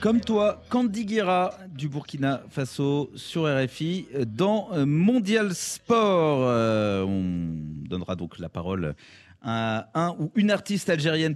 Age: 30-49